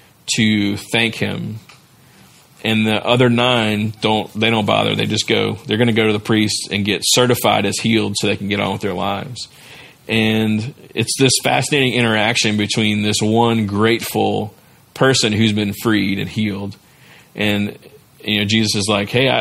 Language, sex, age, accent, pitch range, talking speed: English, male, 40-59, American, 110-125 Hz, 175 wpm